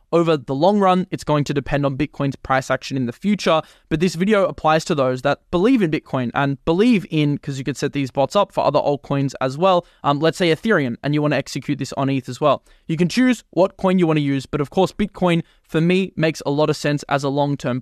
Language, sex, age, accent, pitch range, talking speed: English, male, 20-39, Australian, 145-185 Hz, 260 wpm